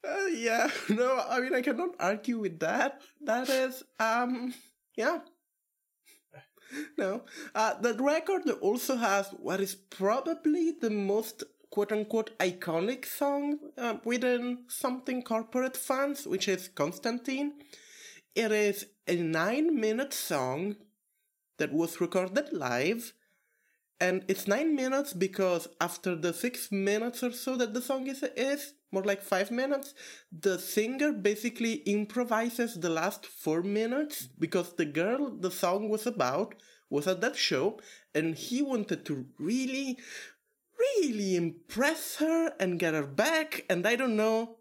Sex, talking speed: male, 135 wpm